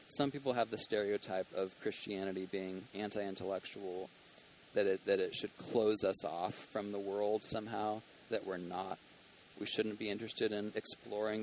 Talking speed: 160 wpm